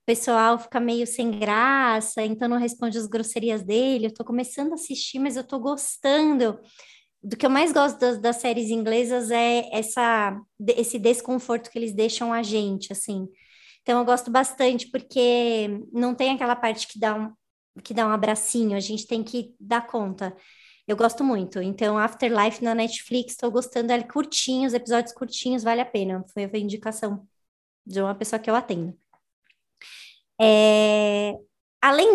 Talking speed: 165 wpm